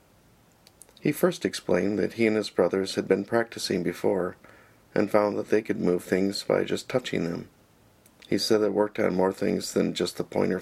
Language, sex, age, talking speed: English, male, 40-59, 190 wpm